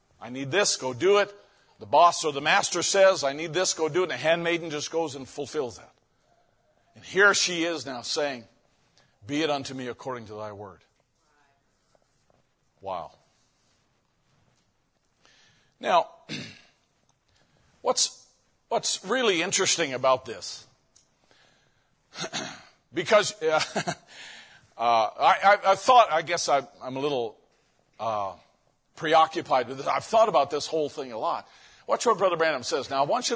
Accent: American